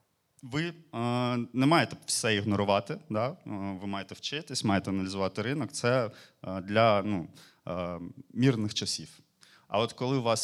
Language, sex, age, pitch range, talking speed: Ukrainian, male, 30-49, 95-130 Hz, 125 wpm